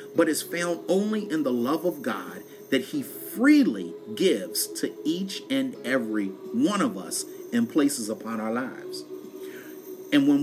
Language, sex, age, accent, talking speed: English, male, 40-59, American, 155 wpm